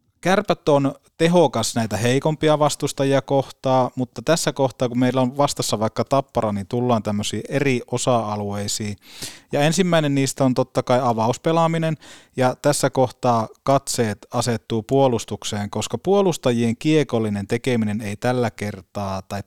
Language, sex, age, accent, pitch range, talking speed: Finnish, male, 20-39, native, 110-135 Hz, 130 wpm